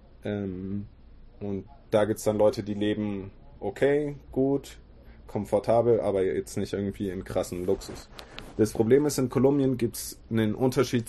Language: German